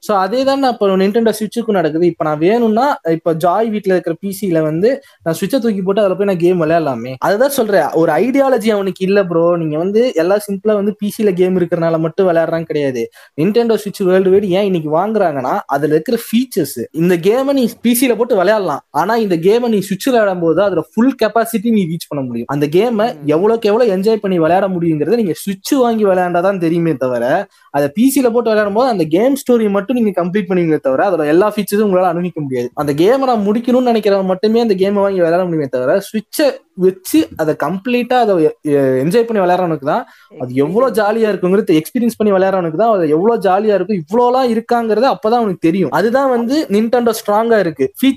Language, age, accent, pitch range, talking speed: Tamil, 20-39, native, 175-235 Hz, 145 wpm